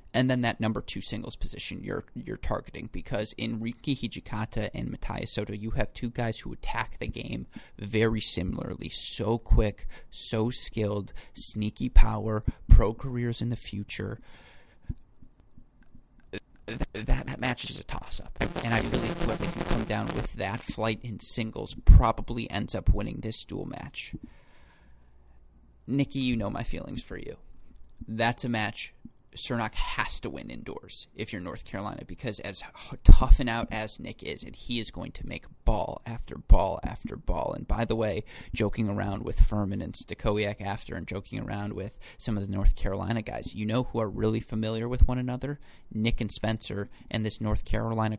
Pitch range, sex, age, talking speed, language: 100-115 Hz, male, 30-49, 175 wpm, English